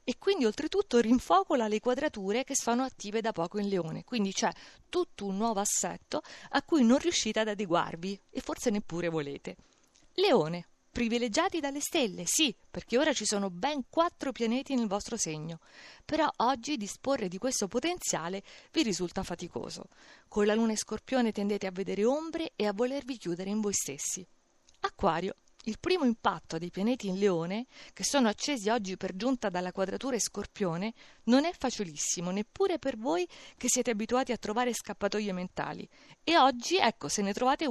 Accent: native